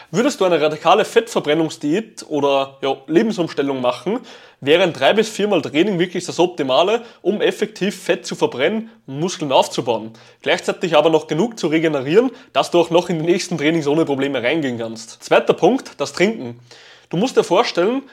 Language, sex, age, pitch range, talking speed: German, male, 20-39, 150-215 Hz, 170 wpm